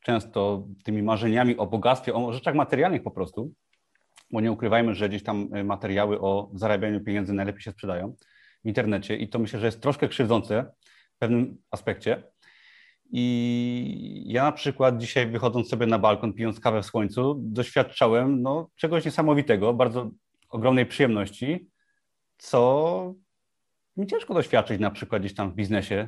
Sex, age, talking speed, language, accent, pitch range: male, 30-49, 145 wpm, Polish, native, 105-135 Hz